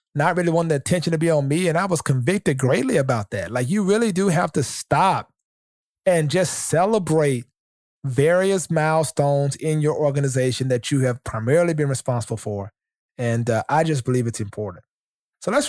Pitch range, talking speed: 135-170 Hz, 180 wpm